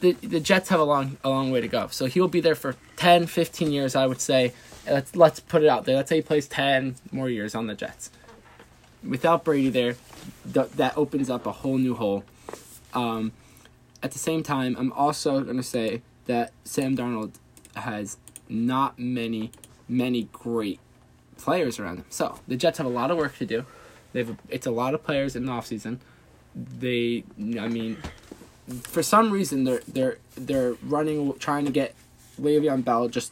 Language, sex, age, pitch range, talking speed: English, male, 20-39, 120-155 Hz, 190 wpm